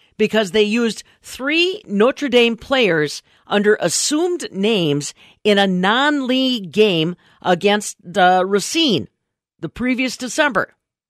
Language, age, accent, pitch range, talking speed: English, 50-69, American, 160-220 Hz, 110 wpm